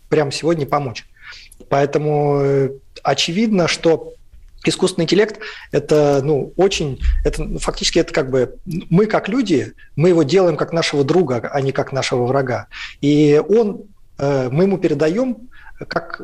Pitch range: 140-180 Hz